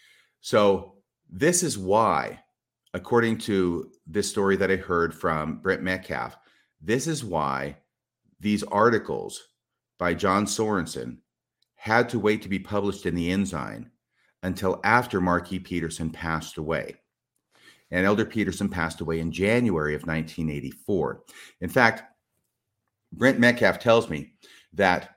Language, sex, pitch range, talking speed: English, male, 85-115 Hz, 130 wpm